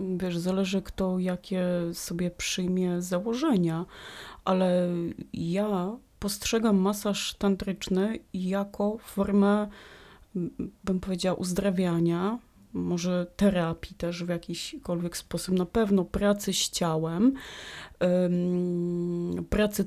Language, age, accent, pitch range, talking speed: Polish, 30-49, native, 175-205 Hz, 90 wpm